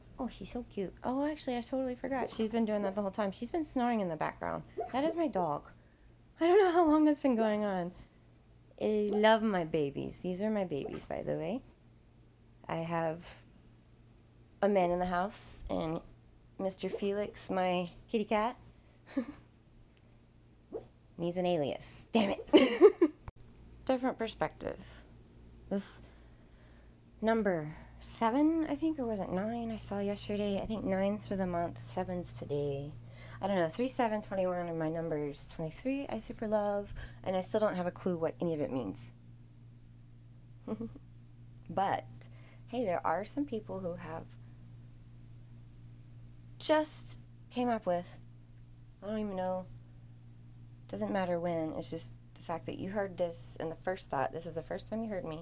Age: 20-39